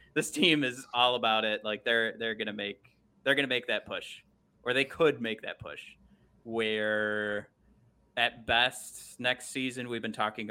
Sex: male